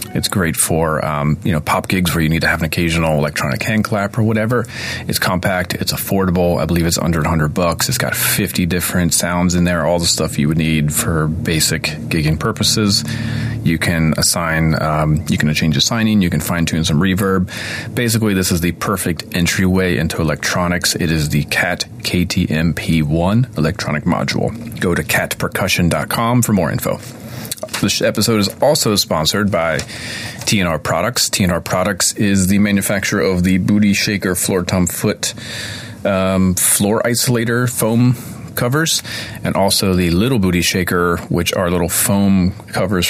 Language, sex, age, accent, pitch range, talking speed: English, male, 30-49, American, 80-105 Hz, 165 wpm